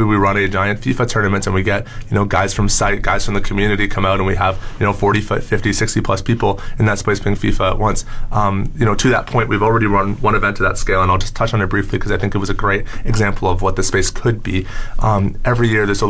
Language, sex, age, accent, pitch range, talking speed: English, male, 20-39, American, 95-110 Hz, 285 wpm